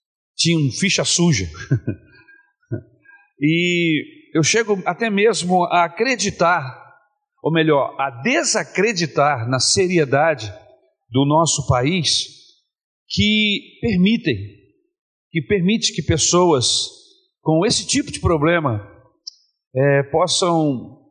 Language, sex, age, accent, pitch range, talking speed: Portuguese, male, 50-69, Brazilian, 140-215 Hz, 90 wpm